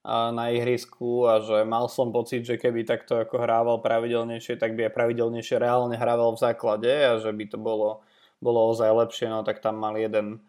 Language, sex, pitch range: Slovak, male, 115-135 Hz